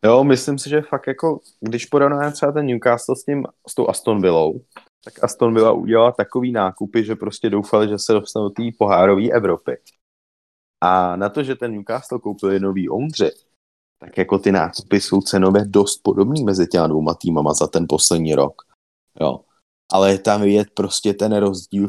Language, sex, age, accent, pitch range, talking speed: English, male, 30-49, Czech, 90-110 Hz, 180 wpm